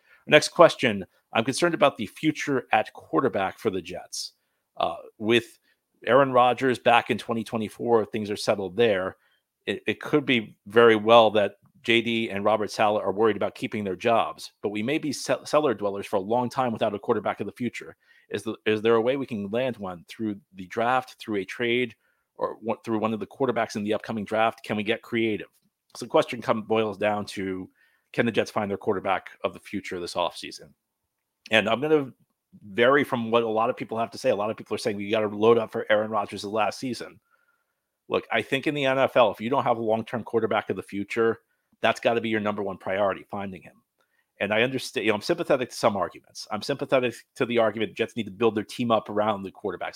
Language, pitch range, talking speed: English, 105-125 Hz, 230 wpm